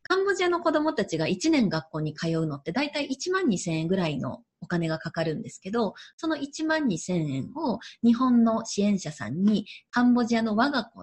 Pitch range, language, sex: 160-235 Hz, Japanese, female